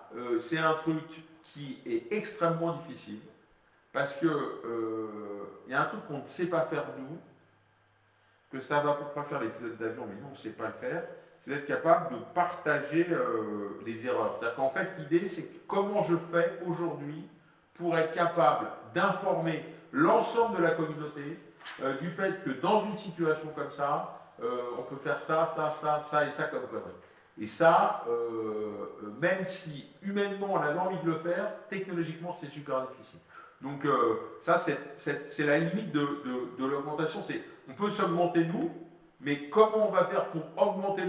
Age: 50-69